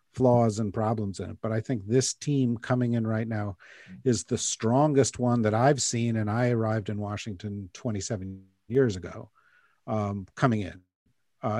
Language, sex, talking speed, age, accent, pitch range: English, male, 170 wpm, 50-69, American, 110-135 Hz